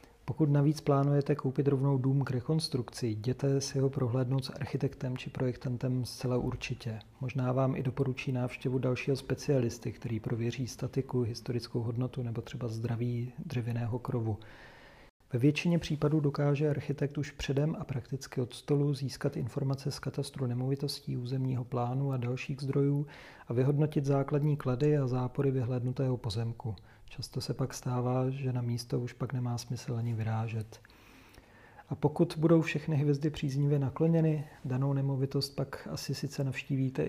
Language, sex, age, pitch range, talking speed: Czech, male, 40-59, 125-140 Hz, 145 wpm